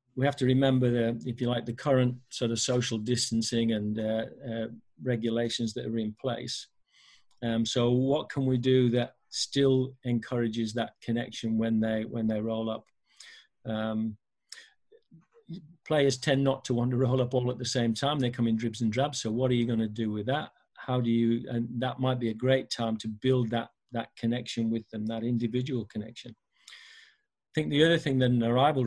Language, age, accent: English, 50-69, British